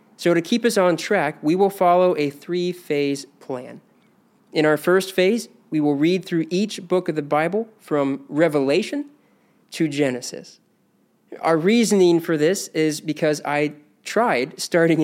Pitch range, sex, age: 150-200 Hz, male, 20-39